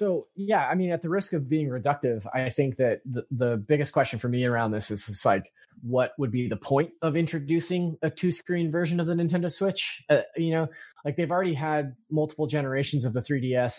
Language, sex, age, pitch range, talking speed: English, male, 20-39, 120-155 Hz, 215 wpm